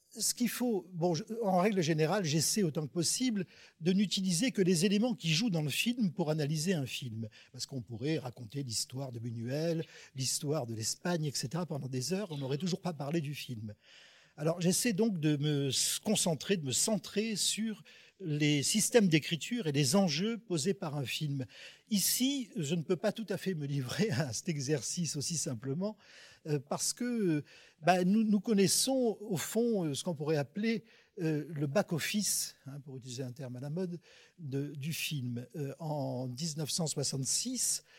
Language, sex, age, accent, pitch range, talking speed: French, male, 50-69, French, 140-195 Hz, 175 wpm